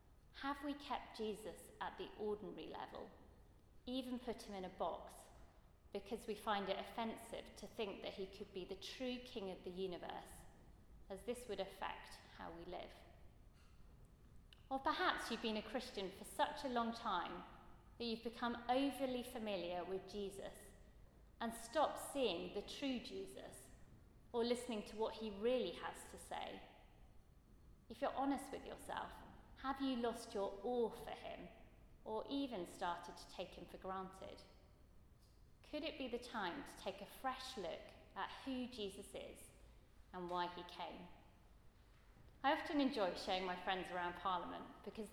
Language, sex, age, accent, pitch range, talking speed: English, female, 30-49, British, 195-245 Hz, 155 wpm